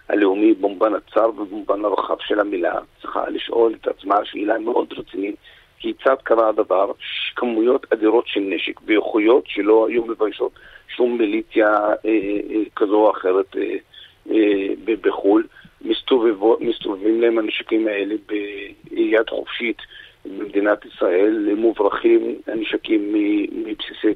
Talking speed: 120 wpm